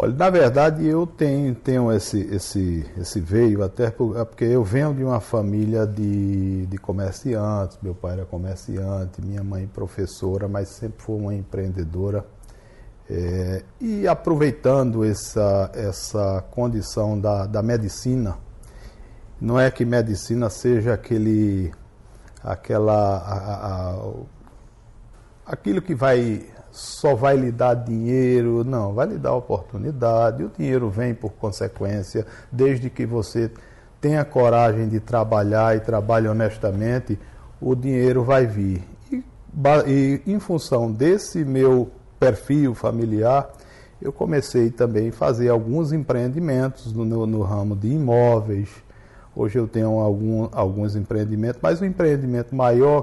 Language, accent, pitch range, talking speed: Portuguese, Brazilian, 105-125 Hz, 130 wpm